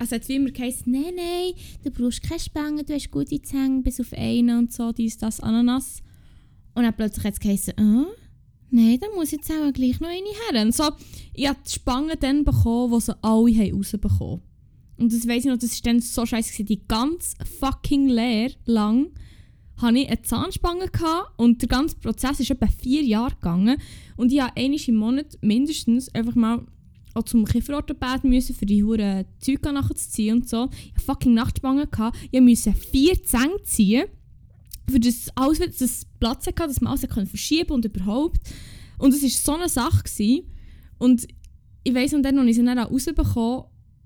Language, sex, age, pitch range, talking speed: German, female, 10-29, 230-270 Hz, 185 wpm